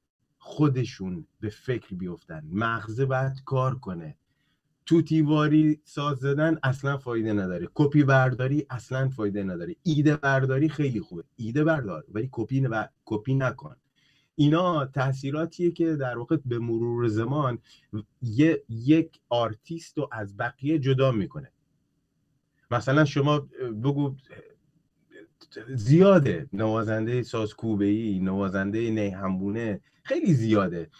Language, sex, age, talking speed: Persian, male, 30-49, 105 wpm